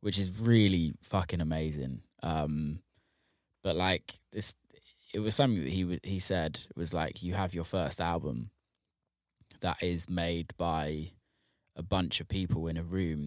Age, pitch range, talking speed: 20-39, 80-100 Hz, 160 wpm